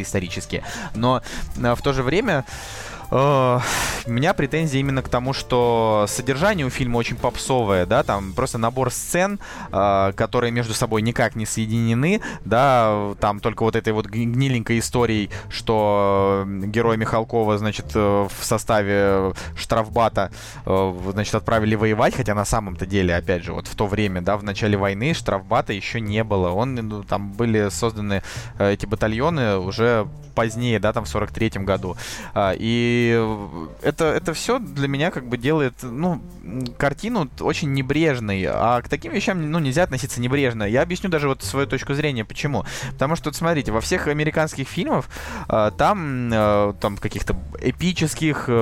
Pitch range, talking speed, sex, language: 105-135 Hz, 160 wpm, male, Russian